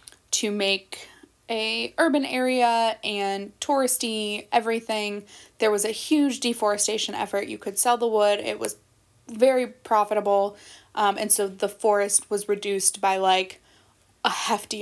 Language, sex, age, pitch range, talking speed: English, female, 20-39, 200-230 Hz, 140 wpm